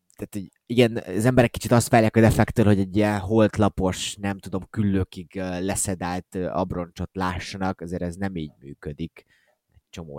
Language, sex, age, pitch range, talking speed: Hungarian, male, 20-39, 95-125 Hz, 145 wpm